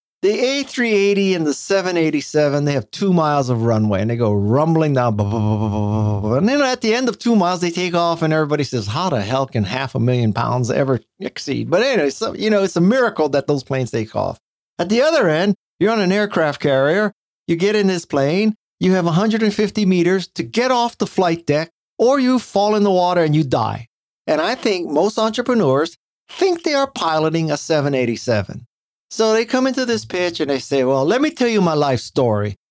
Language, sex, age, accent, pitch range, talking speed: English, male, 50-69, American, 145-220 Hz, 210 wpm